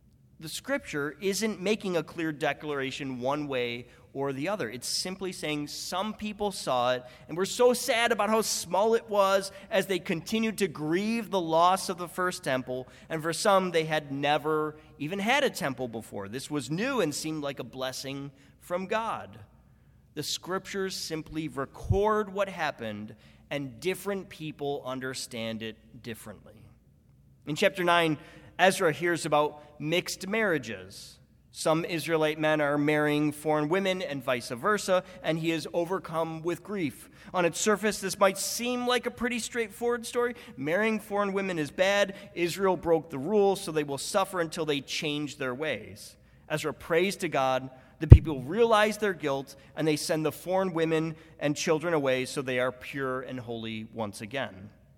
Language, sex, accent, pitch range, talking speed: English, male, American, 140-195 Hz, 165 wpm